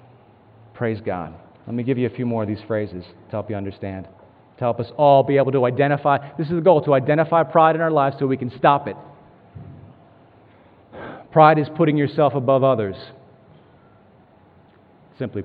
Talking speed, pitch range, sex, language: 180 wpm, 115-155 Hz, male, English